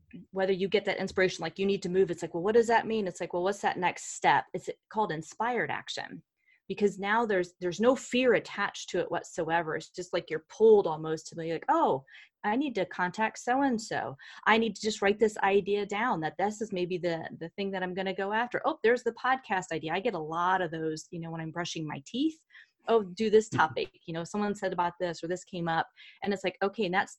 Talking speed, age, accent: 245 wpm, 30-49, American